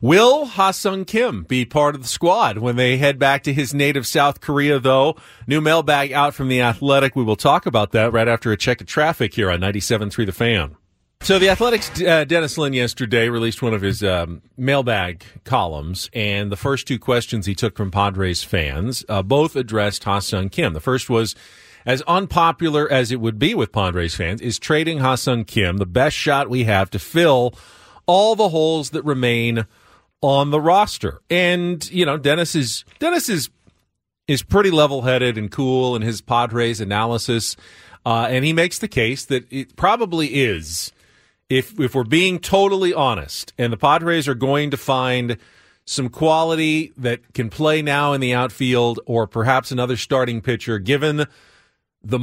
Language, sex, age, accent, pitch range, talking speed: English, male, 40-59, American, 115-150 Hz, 180 wpm